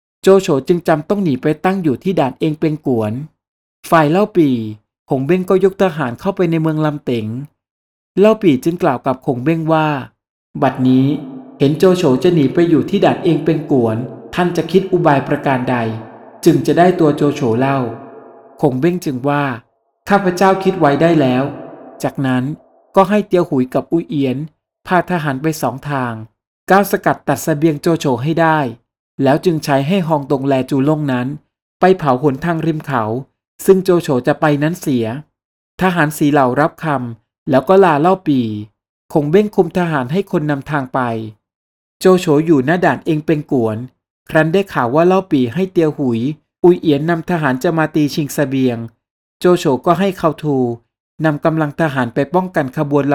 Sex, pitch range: male, 130-170 Hz